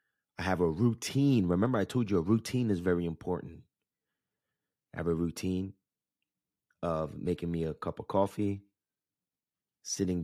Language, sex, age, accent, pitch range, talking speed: English, male, 30-49, American, 85-100 Hz, 145 wpm